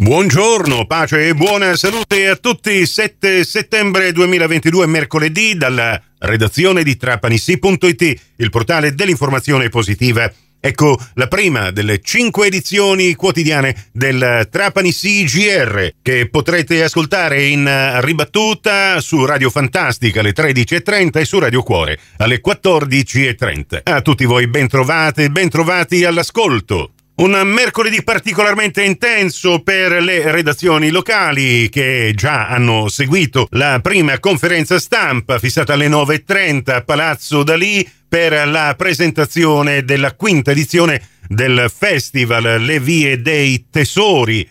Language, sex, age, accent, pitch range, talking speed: Italian, male, 50-69, native, 130-180 Hz, 115 wpm